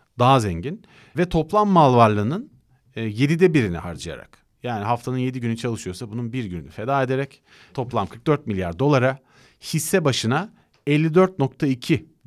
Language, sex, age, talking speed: Turkish, male, 40-59, 130 wpm